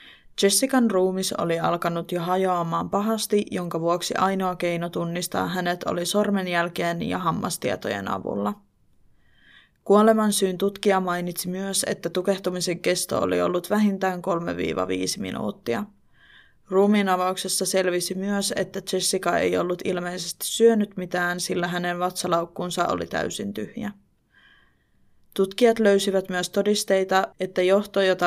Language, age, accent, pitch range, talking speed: Finnish, 20-39, native, 175-200 Hz, 115 wpm